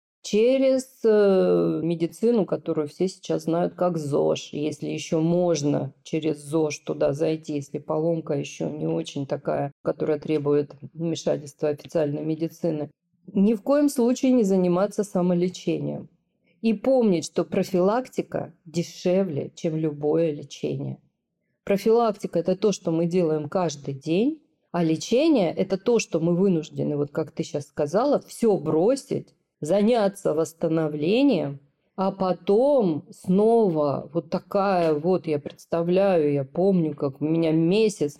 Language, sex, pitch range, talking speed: Russian, female, 155-195 Hz, 125 wpm